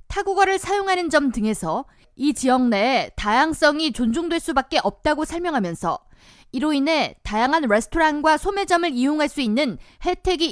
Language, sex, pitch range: Korean, female, 250-340 Hz